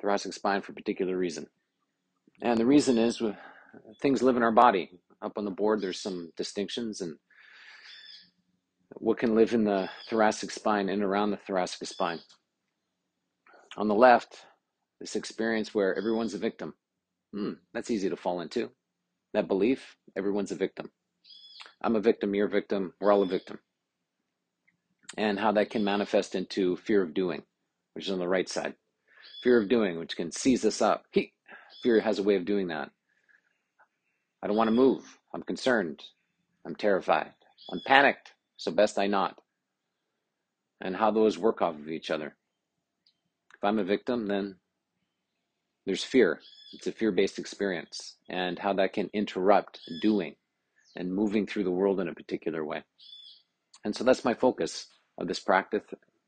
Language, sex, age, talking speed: English, male, 40-59, 160 wpm